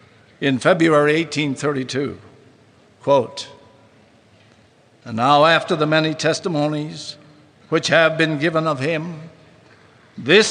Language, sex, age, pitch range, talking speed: English, male, 60-79, 115-165 Hz, 95 wpm